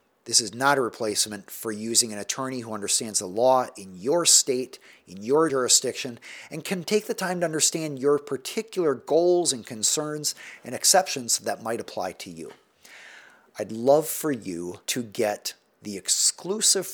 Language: English